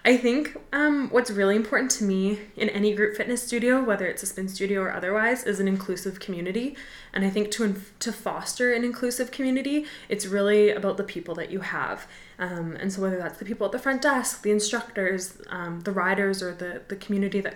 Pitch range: 185-225 Hz